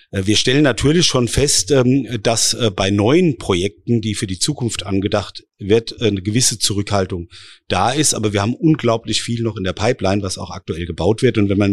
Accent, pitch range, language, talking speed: German, 95-120 Hz, German, 190 wpm